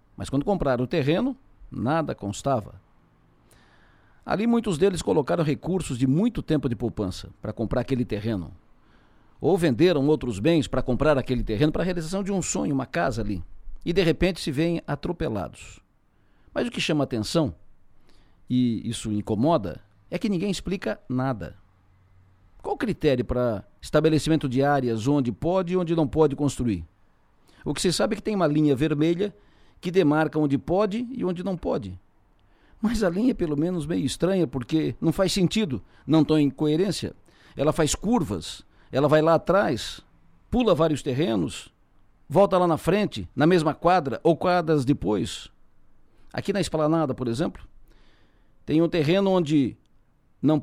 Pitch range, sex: 115-170 Hz, male